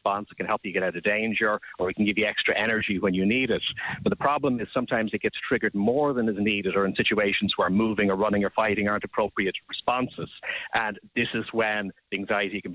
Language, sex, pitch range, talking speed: English, male, 100-120 Hz, 230 wpm